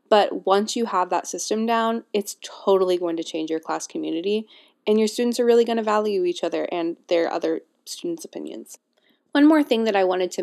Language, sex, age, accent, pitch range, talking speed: English, female, 20-39, American, 180-255 Hz, 205 wpm